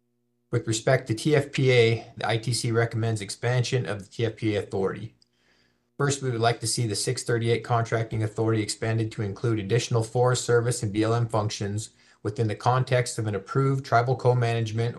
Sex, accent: male, American